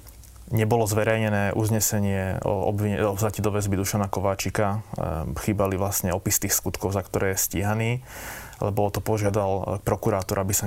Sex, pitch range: male, 100-115 Hz